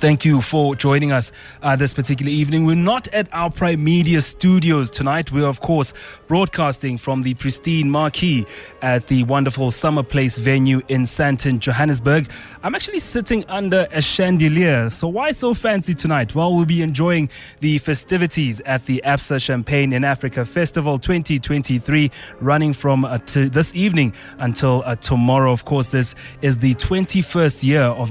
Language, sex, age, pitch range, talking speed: English, male, 20-39, 130-165 Hz, 160 wpm